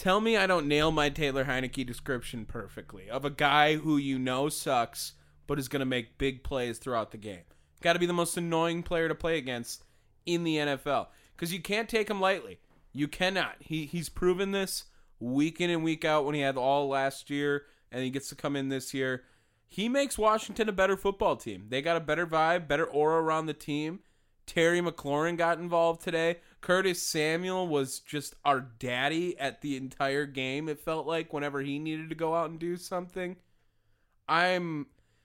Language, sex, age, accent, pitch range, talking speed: English, male, 20-39, American, 130-170 Hz, 195 wpm